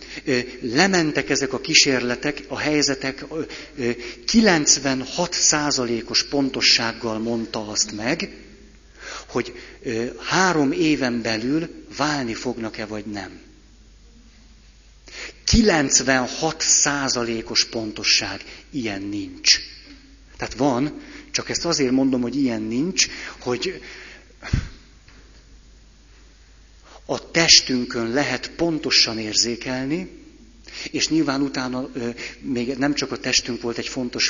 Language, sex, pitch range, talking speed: Hungarian, male, 115-145 Hz, 85 wpm